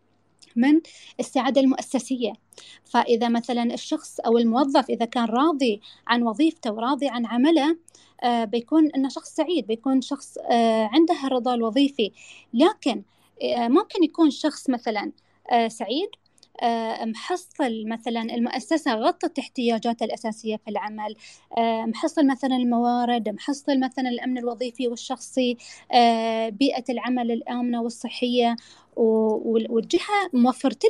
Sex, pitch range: female, 235-295 Hz